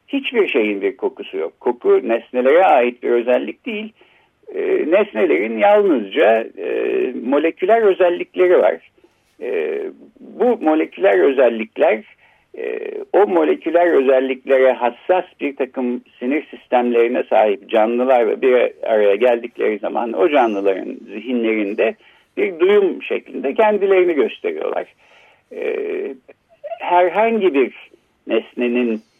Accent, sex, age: native, male, 60-79